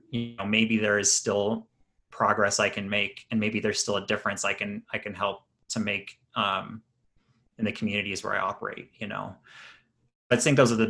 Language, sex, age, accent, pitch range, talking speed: English, male, 30-49, American, 100-115 Hz, 205 wpm